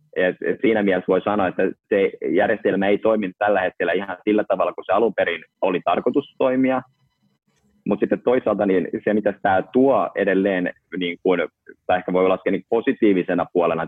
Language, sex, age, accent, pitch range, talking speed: Finnish, male, 30-49, native, 85-110 Hz, 175 wpm